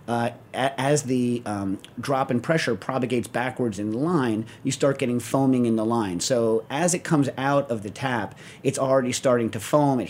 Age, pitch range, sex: 40-59, 110-130 Hz, male